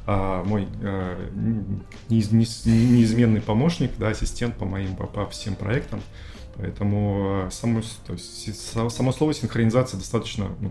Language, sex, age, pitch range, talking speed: Russian, male, 20-39, 100-115 Hz, 95 wpm